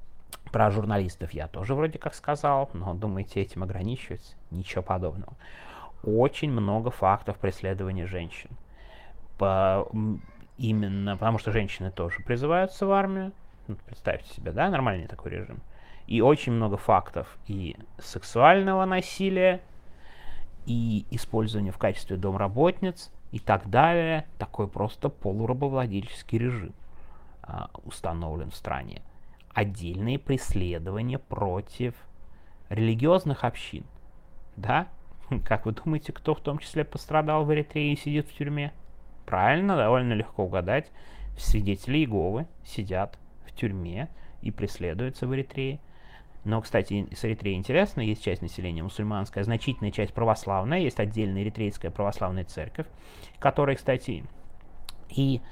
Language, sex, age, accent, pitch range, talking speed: Russian, male, 30-49, native, 95-130 Hz, 115 wpm